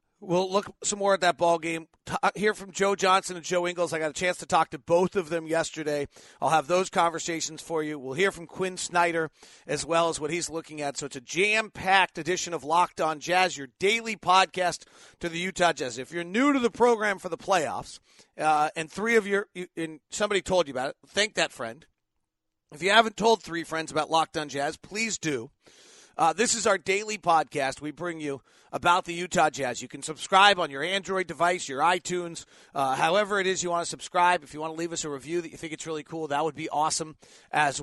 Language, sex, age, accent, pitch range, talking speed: English, male, 40-59, American, 155-190 Hz, 230 wpm